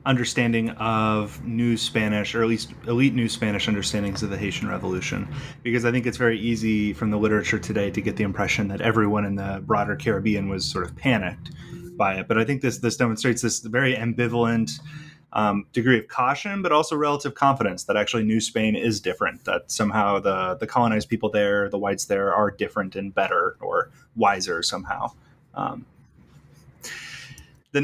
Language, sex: English, male